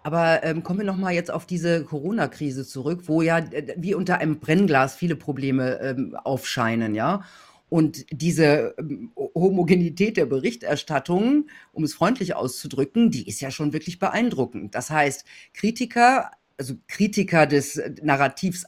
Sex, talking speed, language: female, 140 wpm, German